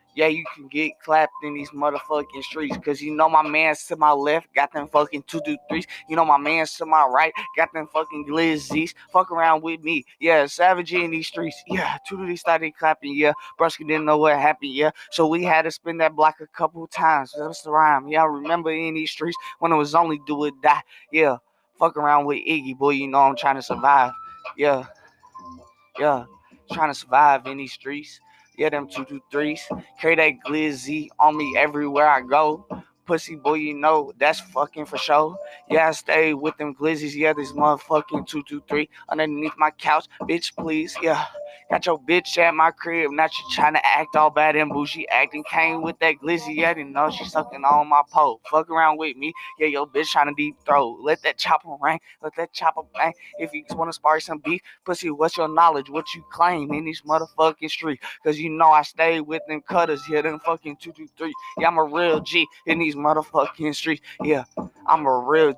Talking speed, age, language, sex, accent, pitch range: 210 wpm, 20-39, English, male, American, 150-165 Hz